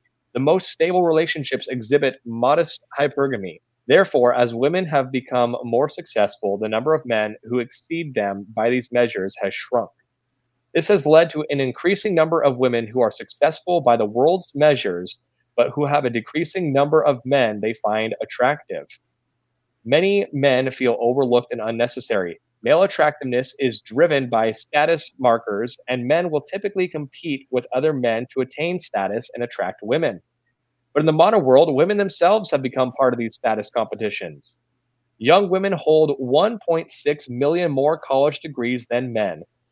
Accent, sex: American, male